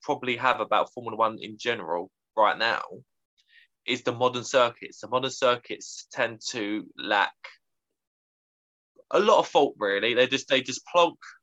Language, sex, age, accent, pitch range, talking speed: English, male, 20-39, British, 110-135 Hz, 150 wpm